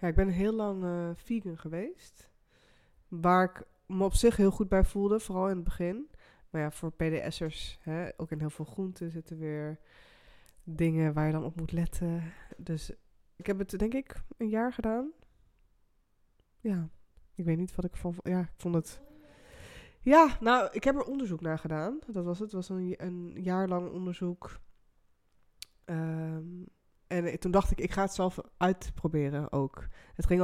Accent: Dutch